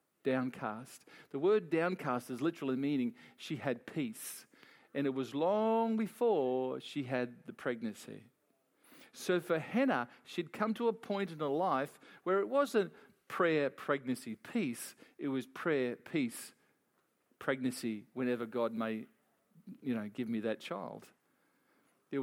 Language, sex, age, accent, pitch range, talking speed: English, male, 50-69, Australian, 130-210 Hz, 140 wpm